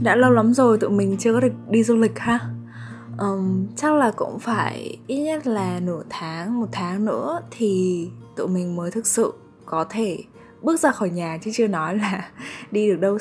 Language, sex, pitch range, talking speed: Vietnamese, female, 175-225 Hz, 205 wpm